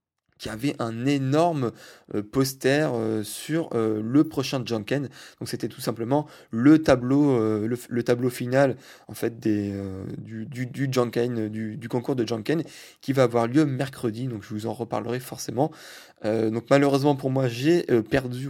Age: 20-39